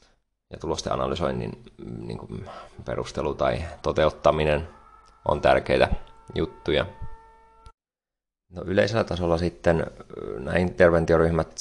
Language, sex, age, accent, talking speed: Finnish, male, 30-49, native, 90 wpm